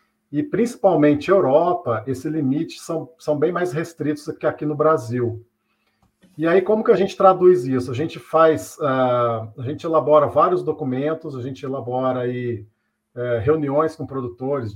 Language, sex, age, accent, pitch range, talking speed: Portuguese, male, 40-59, Brazilian, 125-160 Hz, 155 wpm